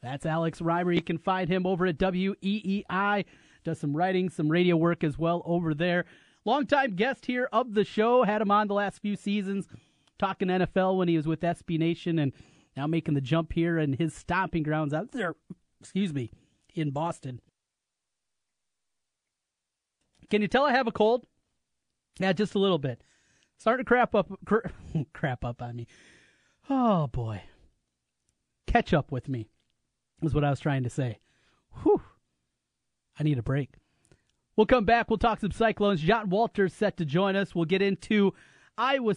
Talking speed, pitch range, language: 175 wpm, 160-215 Hz, English